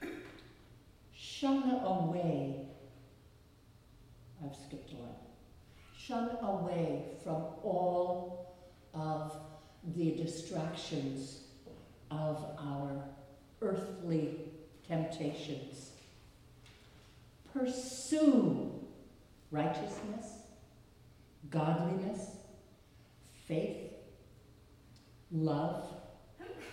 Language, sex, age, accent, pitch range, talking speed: English, female, 60-79, American, 135-180 Hz, 50 wpm